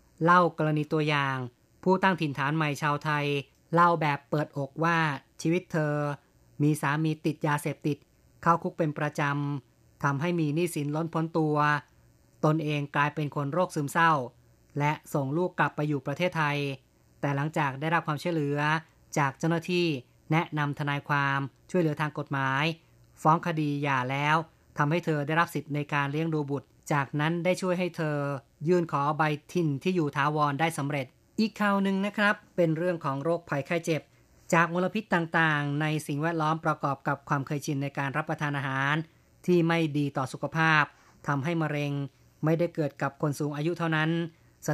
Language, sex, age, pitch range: Thai, female, 20-39, 145-165 Hz